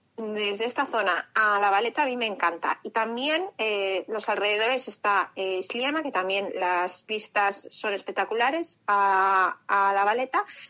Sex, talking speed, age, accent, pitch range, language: female, 150 wpm, 30-49, Spanish, 200-240 Hz, Spanish